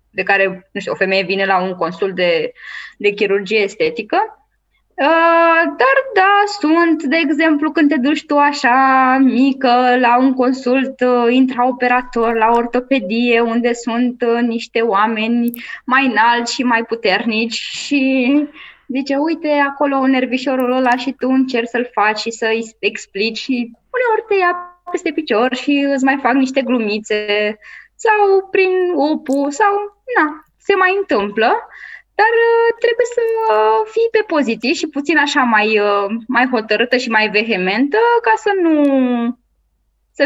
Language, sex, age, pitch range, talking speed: Romanian, female, 20-39, 230-315 Hz, 140 wpm